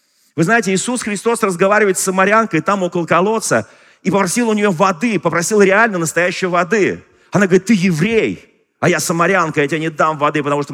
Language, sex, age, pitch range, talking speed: Russian, male, 40-59, 165-220 Hz, 185 wpm